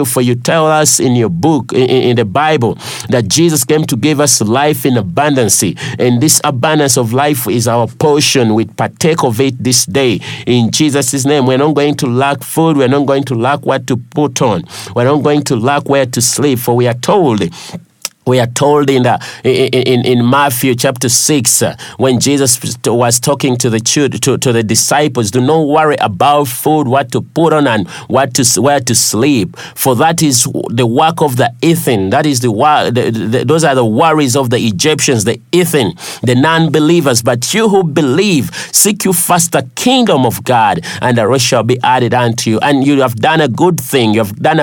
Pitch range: 125-150 Hz